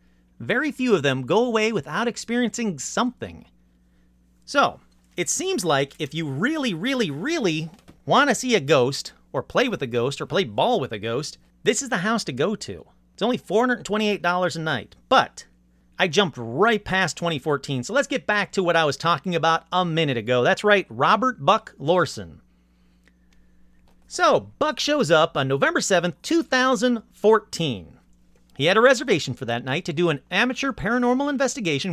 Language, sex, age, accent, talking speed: English, male, 40-59, American, 170 wpm